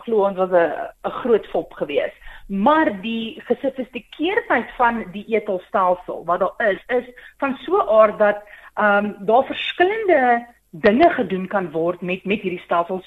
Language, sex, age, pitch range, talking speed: English, female, 40-59, 205-280 Hz, 150 wpm